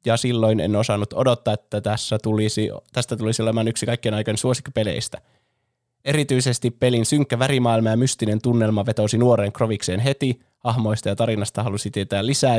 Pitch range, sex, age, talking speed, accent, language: 110-125 Hz, male, 20-39, 155 wpm, native, Finnish